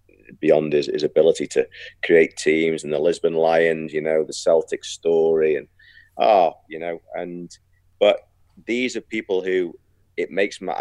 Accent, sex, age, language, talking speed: British, male, 40-59, English, 160 wpm